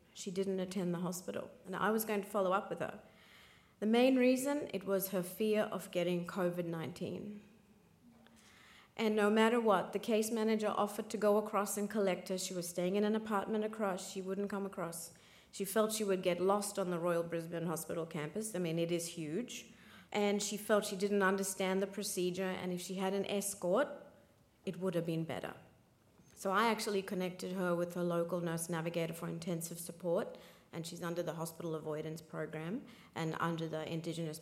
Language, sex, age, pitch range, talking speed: English, female, 40-59, 170-200 Hz, 190 wpm